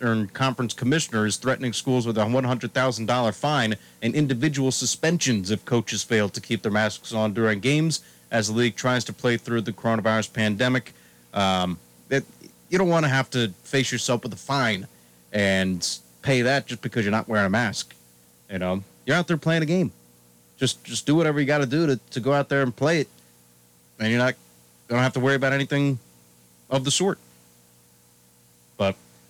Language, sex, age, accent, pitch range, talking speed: English, male, 30-49, American, 100-135 Hz, 195 wpm